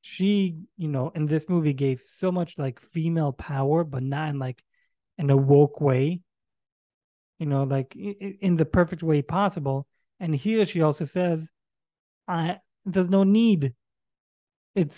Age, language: 20-39, English